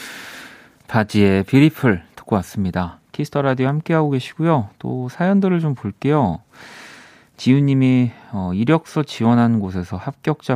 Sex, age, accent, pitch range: male, 30-49, native, 95-130 Hz